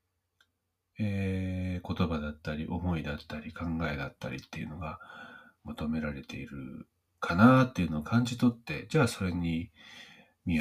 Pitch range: 80-110 Hz